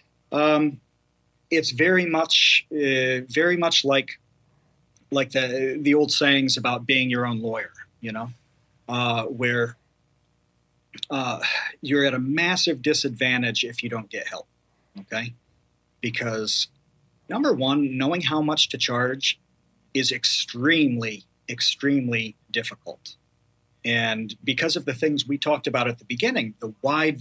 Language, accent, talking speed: English, American, 130 wpm